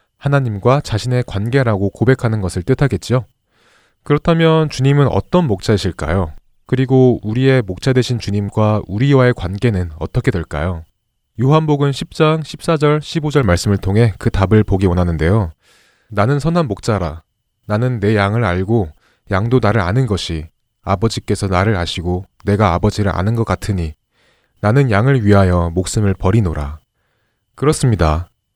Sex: male